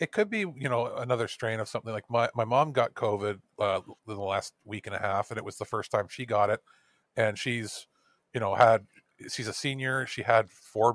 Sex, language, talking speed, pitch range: male, English, 230 wpm, 110-130 Hz